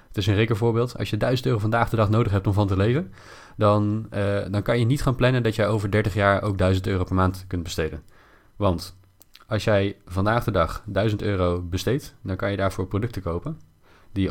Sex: male